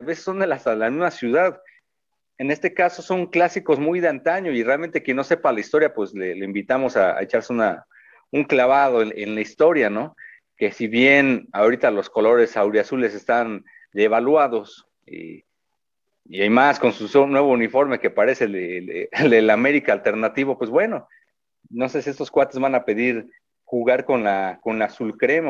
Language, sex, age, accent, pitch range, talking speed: Spanish, male, 40-59, Mexican, 120-165 Hz, 180 wpm